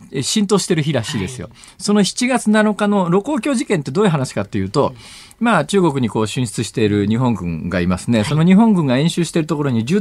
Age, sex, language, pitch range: 50-69, male, Japanese, 130-215 Hz